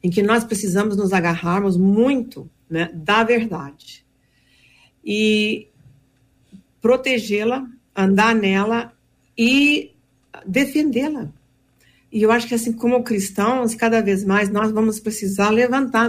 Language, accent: Portuguese, Brazilian